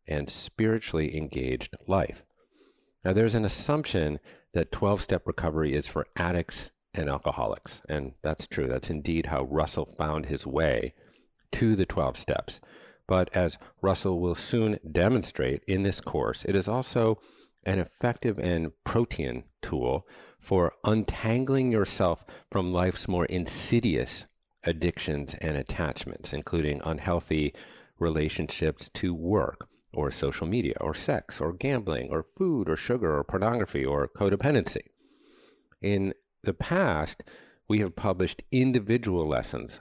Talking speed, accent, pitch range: 130 wpm, American, 80-110 Hz